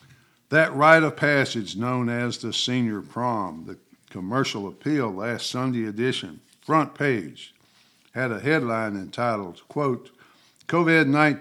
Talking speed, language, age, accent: 120 wpm, English, 60-79, American